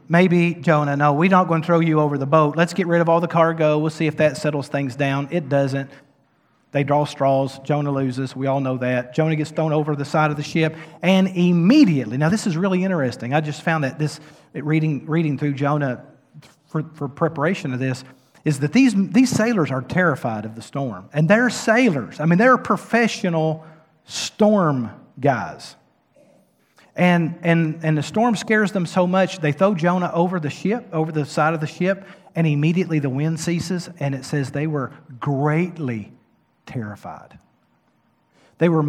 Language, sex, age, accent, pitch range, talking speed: English, male, 40-59, American, 145-175 Hz, 185 wpm